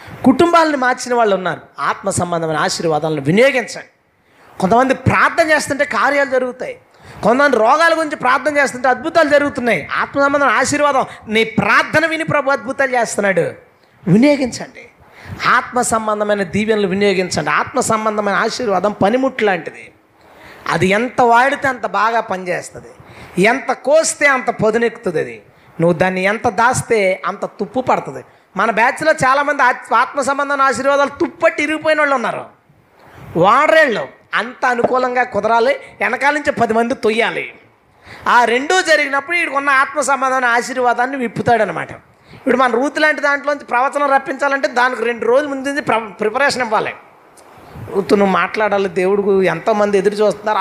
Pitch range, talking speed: 215-280 Hz, 120 wpm